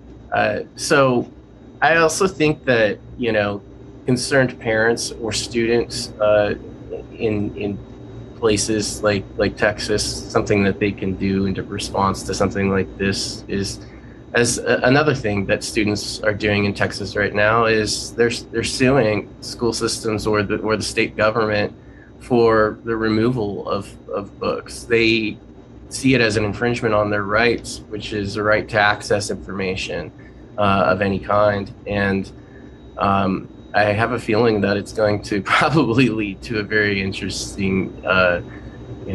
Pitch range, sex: 100-120 Hz, male